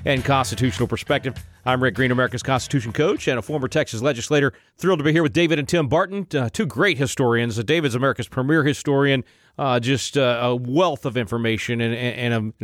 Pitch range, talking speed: 115-145 Hz, 200 wpm